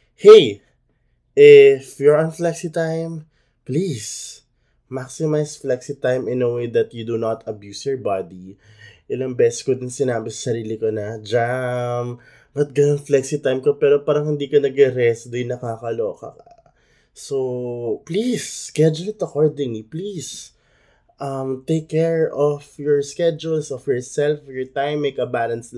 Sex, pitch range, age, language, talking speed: male, 120-155 Hz, 20-39, Filipino, 145 wpm